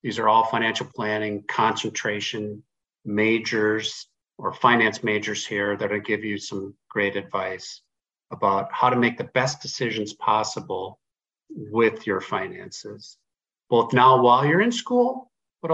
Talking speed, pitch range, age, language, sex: 135 wpm, 105-135 Hz, 50-69, English, male